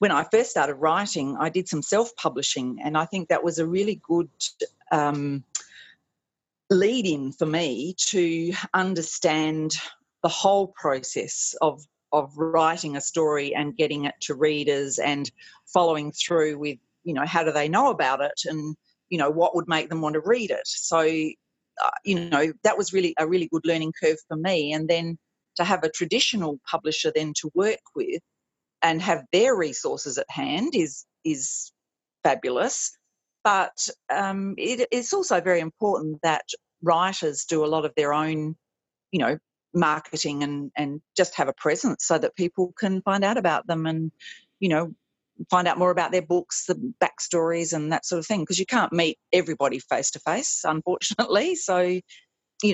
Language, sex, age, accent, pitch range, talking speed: English, female, 40-59, Australian, 155-185 Hz, 175 wpm